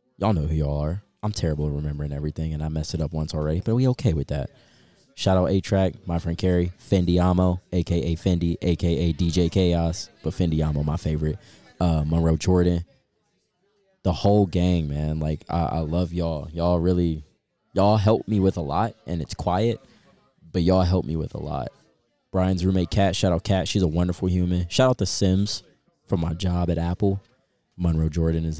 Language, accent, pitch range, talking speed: English, American, 80-95 Hz, 185 wpm